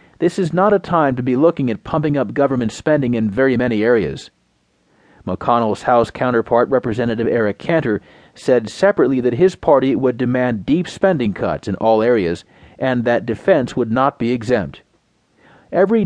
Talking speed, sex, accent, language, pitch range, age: 165 wpm, male, American, English, 115-145 Hz, 40-59